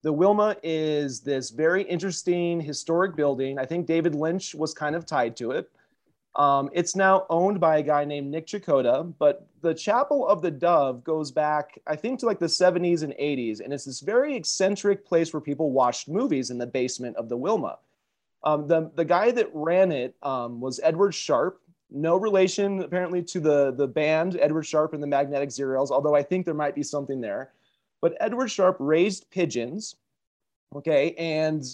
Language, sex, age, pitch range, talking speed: English, male, 30-49, 140-185 Hz, 185 wpm